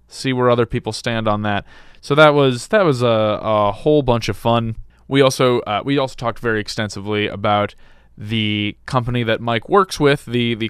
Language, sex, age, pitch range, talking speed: English, male, 20-39, 105-120 Hz, 195 wpm